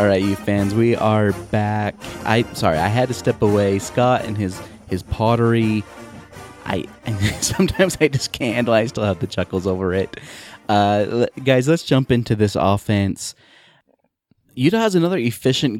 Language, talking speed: English, 170 wpm